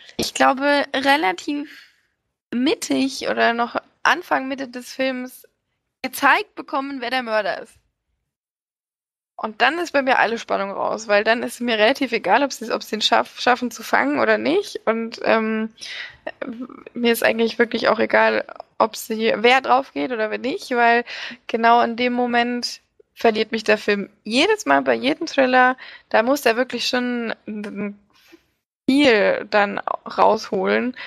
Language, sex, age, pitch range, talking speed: German, female, 20-39, 225-265 Hz, 155 wpm